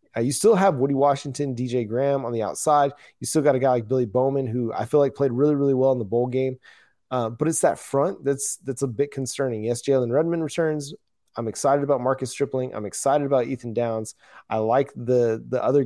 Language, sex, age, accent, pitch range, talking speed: English, male, 20-39, American, 115-140 Hz, 225 wpm